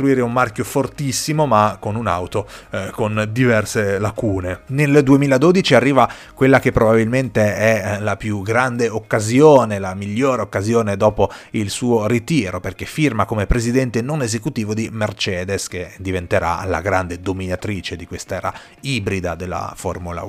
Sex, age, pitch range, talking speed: male, 30-49, 95-125 Hz, 135 wpm